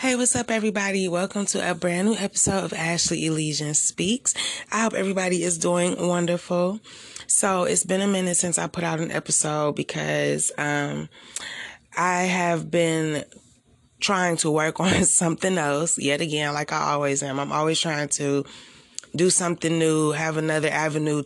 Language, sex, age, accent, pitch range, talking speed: English, female, 20-39, American, 150-185 Hz, 165 wpm